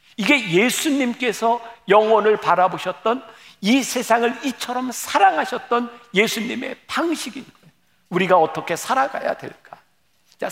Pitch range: 140-225 Hz